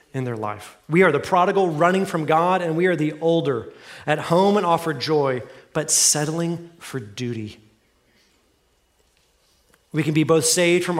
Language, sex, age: English, male, 30-49